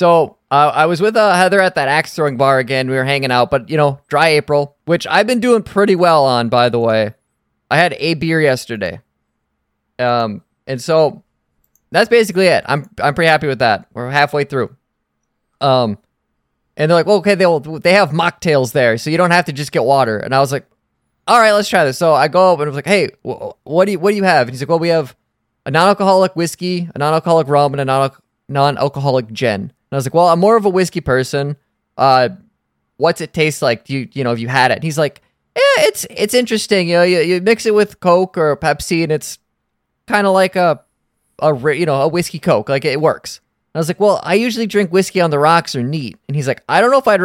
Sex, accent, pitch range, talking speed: male, American, 130-175 Hz, 240 wpm